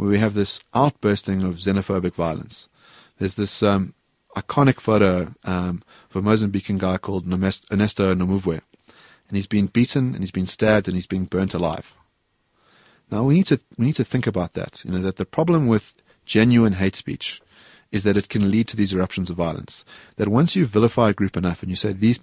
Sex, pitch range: male, 95-110 Hz